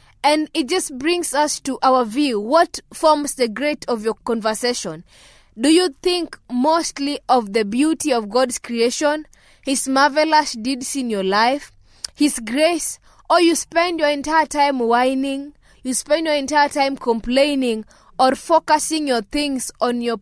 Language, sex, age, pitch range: English, female, 20-39, 225-290 Hz